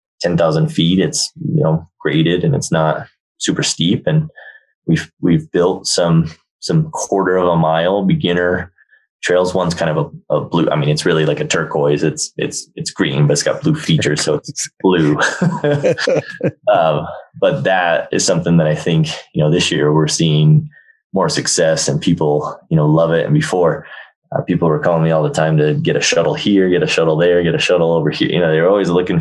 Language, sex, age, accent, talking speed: English, male, 20-39, American, 205 wpm